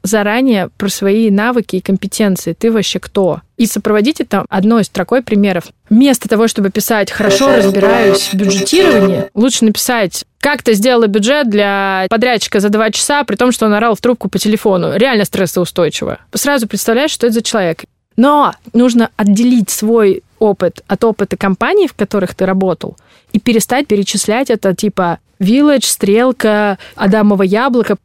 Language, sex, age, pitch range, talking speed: Russian, female, 20-39, 195-235 Hz, 155 wpm